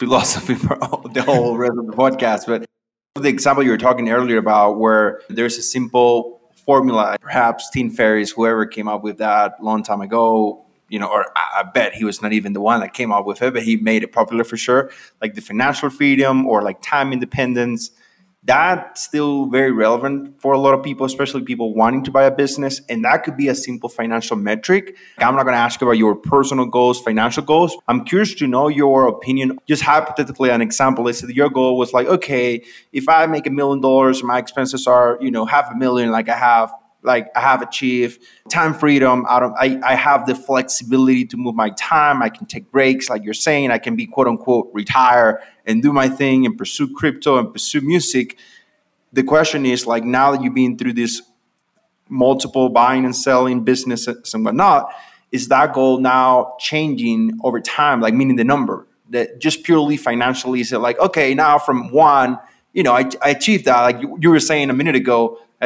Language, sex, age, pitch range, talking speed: English, male, 20-39, 120-140 Hz, 205 wpm